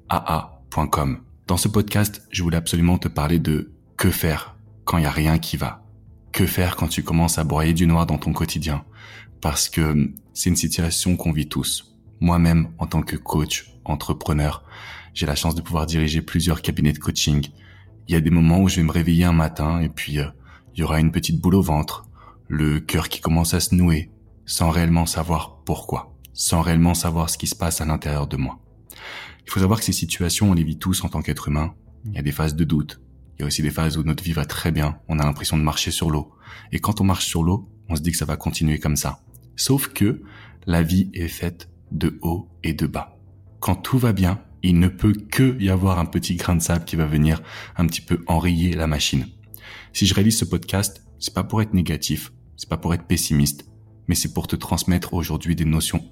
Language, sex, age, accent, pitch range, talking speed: French, male, 20-39, French, 80-95 Hz, 230 wpm